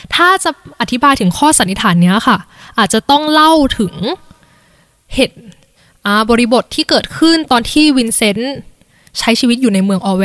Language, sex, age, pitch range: Thai, female, 10-29, 200-270 Hz